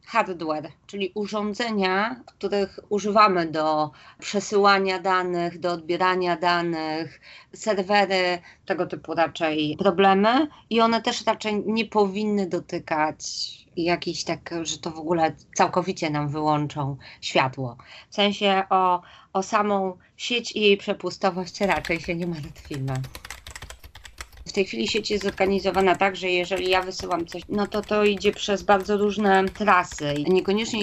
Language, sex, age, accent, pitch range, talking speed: Polish, female, 30-49, native, 165-195 Hz, 130 wpm